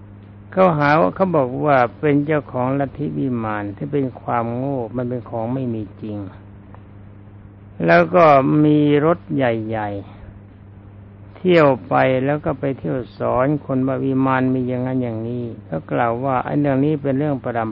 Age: 60-79